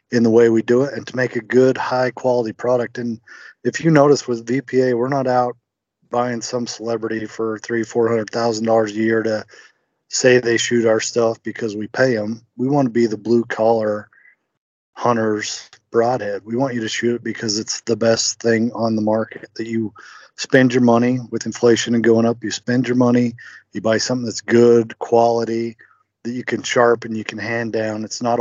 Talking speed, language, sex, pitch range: 205 wpm, English, male, 110-125 Hz